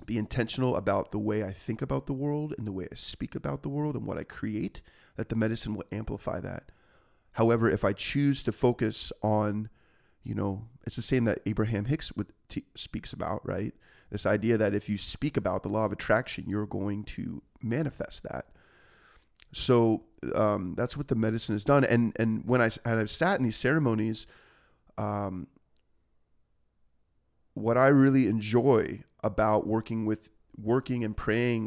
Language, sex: English, male